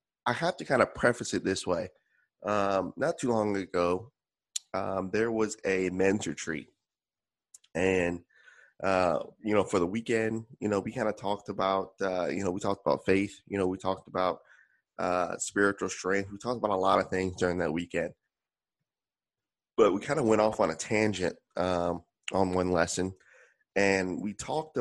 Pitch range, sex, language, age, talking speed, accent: 95-110 Hz, male, English, 20-39, 180 wpm, American